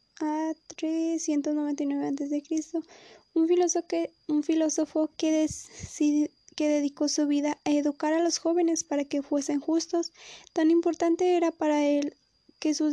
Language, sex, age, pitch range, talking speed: Spanish, female, 10-29, 295-320 Hz, 130 wpm